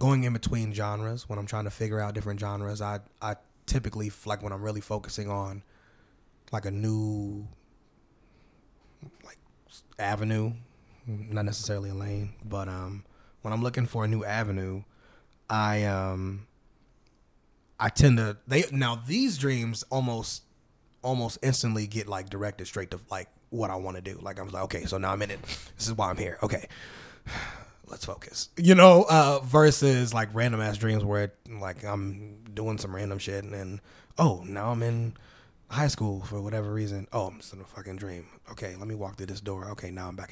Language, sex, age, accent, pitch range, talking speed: English, male, 20-39, American, 100-120 Hz, 185 wpm